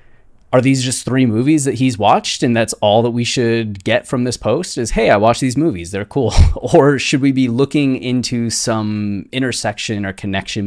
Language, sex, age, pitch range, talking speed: English, male, 20-39, 100-125 Hz, 200 wpm